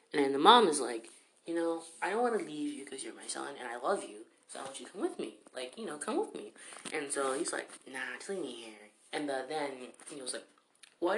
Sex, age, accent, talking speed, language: female, 20-39, American, 275 wpm, English